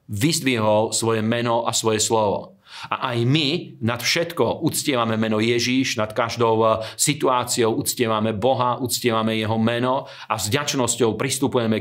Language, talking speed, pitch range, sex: Slovak, 130 wpm, 110-125 Hz, male